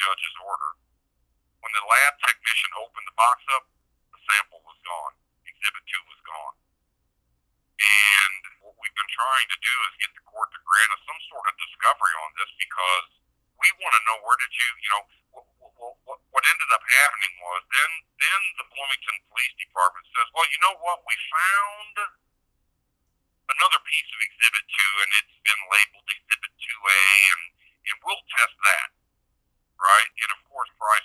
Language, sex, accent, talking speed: English, male, American, 170 wpm